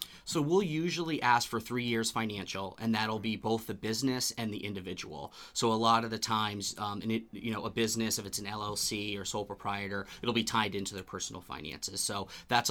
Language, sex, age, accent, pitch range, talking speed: English, male, 30-49, American, 100-115 Hz, 210 wpm